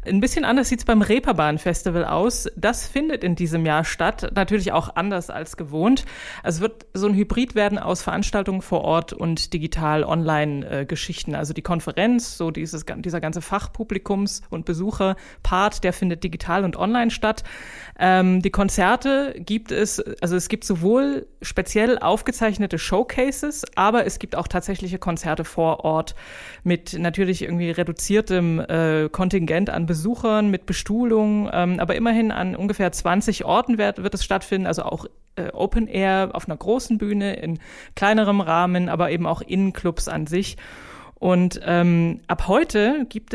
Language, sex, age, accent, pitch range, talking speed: German, female, 30-49, German, 175-220 Hz, 160 wpm